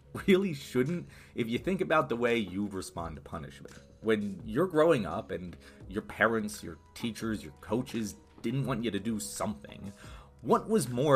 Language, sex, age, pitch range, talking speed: English, male, 30-49, 95-130 Hz, 170 wpm